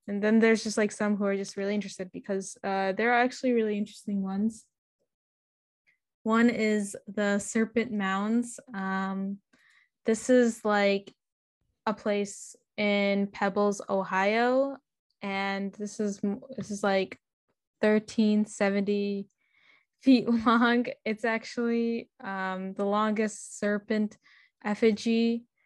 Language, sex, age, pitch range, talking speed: English, female, 10-29, 195-230 Hz, 115 wpm